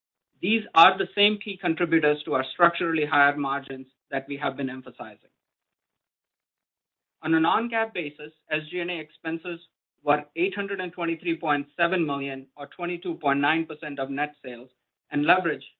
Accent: Indian